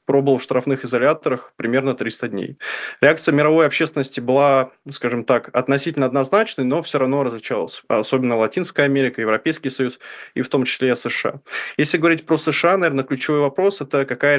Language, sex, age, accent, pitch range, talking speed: Russian, male, 20-39, native, 120-140 Hz, 160 wpm